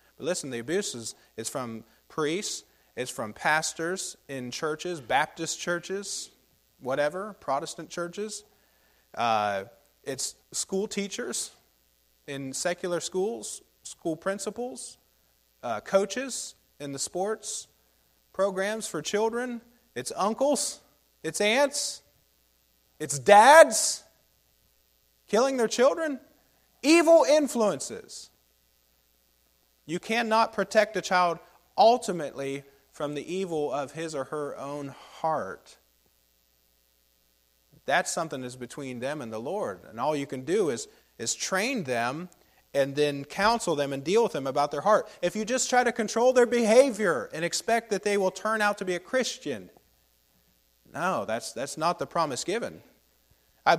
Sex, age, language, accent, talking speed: male, 30-49, English, American, 130 wpm